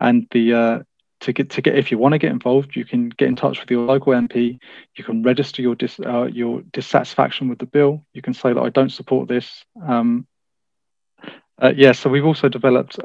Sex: male